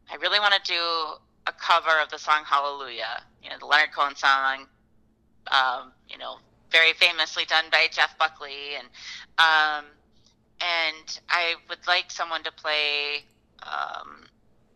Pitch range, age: 145-170 Hz, 30-49